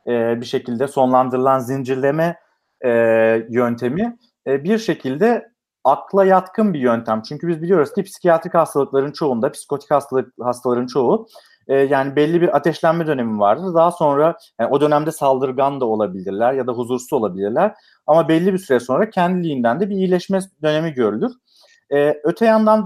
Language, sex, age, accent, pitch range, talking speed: Turkish, male, 40-59, native, 125-185 Hz, 150 wpm